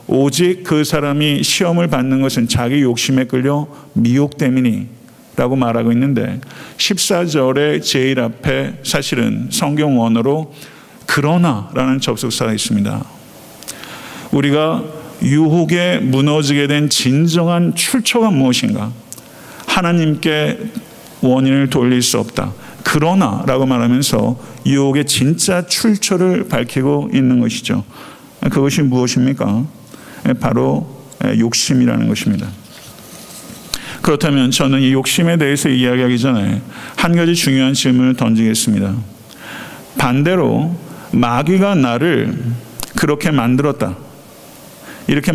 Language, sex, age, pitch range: Korean, male, 50-69, 125-150 Hz